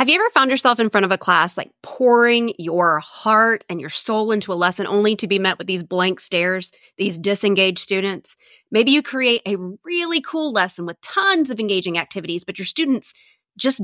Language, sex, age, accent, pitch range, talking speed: English, female, 30-49, American, 190-255 Hz, 205 wpm